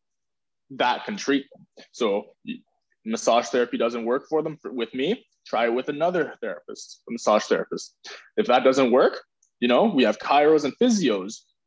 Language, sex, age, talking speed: English, male, 20-39, 170 wpm